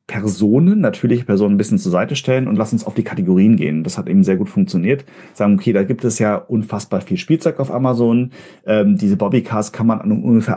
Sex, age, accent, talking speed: male, 40-59, German, 225 wpm